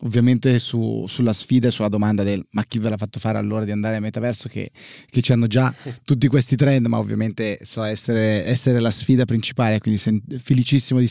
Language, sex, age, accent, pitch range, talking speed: Italian, male, 20-39, native, 110-135 Hz, 200 wpm